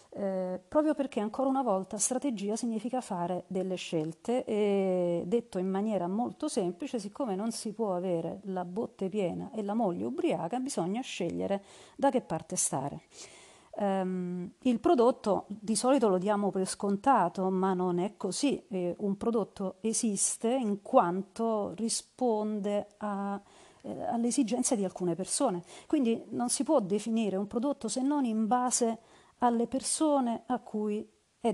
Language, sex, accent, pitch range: Italian, female, native, 190-240 Hz